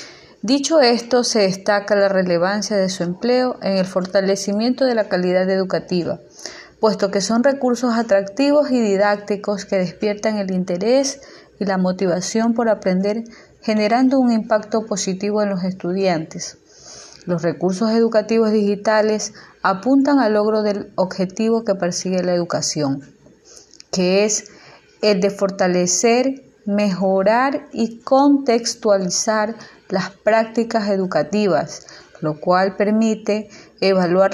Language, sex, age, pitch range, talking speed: Spanish, female, 30-49, 190-235 Hz, 115 wpm